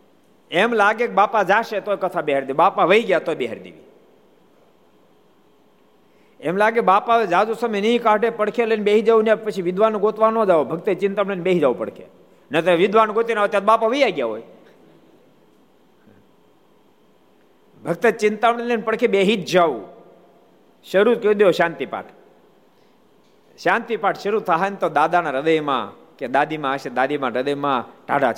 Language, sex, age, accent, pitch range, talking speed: Gujarati, male, 50-69, native, 180-225 Hz, 135 wpm